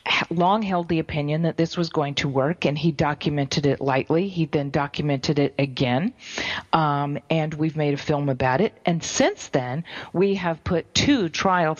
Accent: American